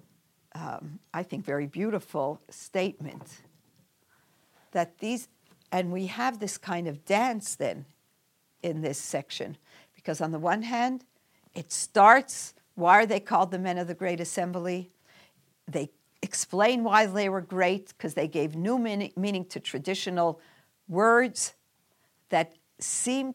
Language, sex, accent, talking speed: English, female, American, 135 wpm